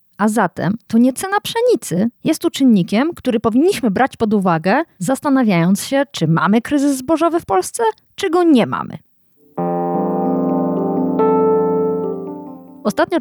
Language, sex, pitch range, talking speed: Polish, female, 180-275 Hz, 125 wpm